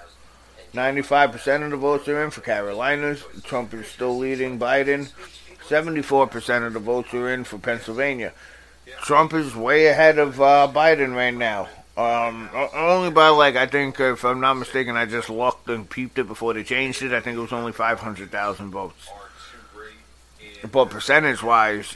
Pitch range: 115-145 Hz